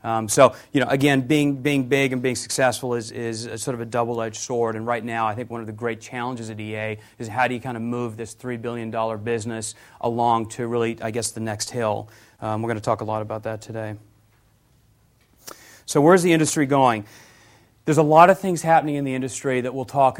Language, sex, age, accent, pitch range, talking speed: English, male, 30-49, American, 115-130 Hz, 230 wpm